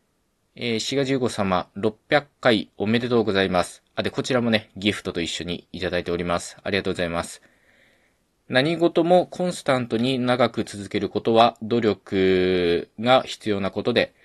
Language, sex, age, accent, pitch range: Japanese, male, 20-39, native, 90-115 Hz